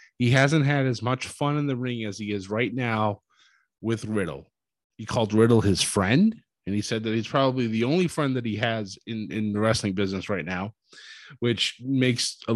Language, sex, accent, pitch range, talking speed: English, male, American, 105-140 Hz, 205 wpm